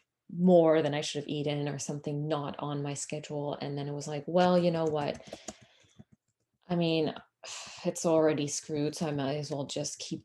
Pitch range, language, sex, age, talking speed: 150-180 Hz, English, female, 20-39, 195 wpm